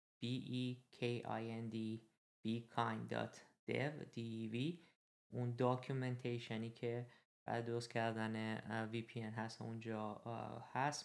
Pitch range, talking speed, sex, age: 110-125 Hz, 75 wpm, male, 20-39